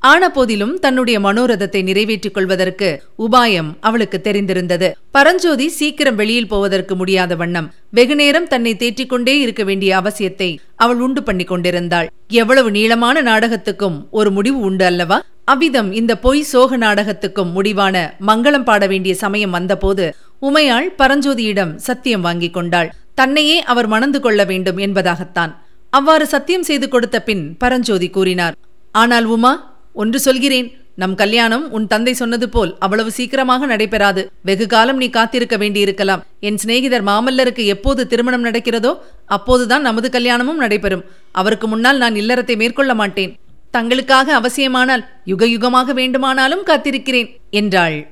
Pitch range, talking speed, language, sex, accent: 195-255 Hz, 110 wpm, Tamil, female, native